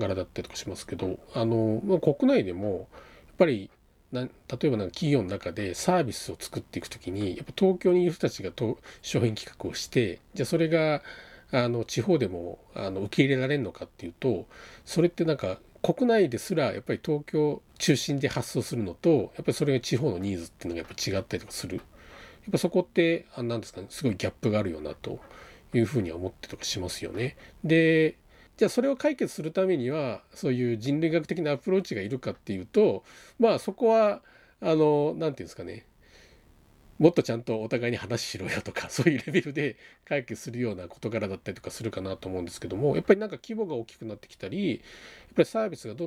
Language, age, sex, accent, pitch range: Japanese, 40-59, male, native, 110-165 Hz